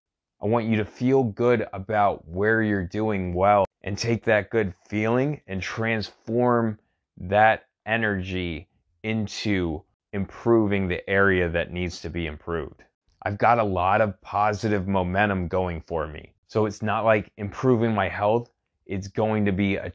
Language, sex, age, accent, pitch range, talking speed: English, male, 20-39, American, 90-110 Hz, 155 wpm